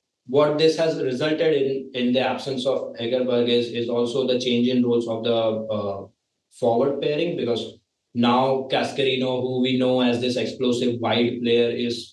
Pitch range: 115-130 Hz